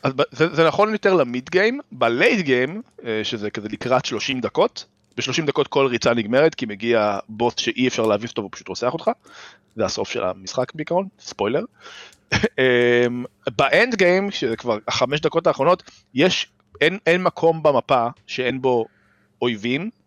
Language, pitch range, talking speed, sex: Hebrew, 105-145 Hz, 150 wpm, male